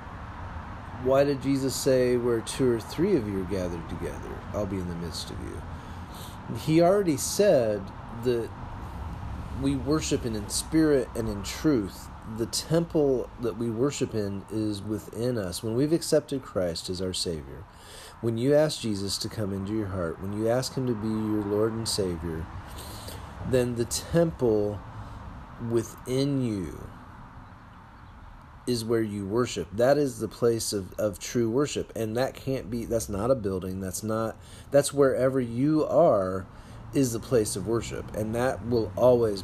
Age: 30-49